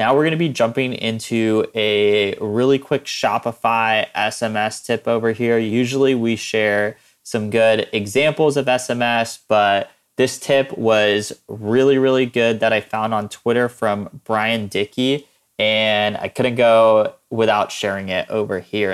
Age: 20-39